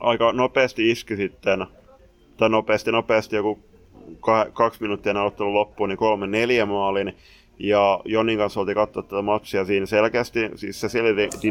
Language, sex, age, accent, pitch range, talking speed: Finnish, male, 20-39, native, 95-110 Hz, 145 wpm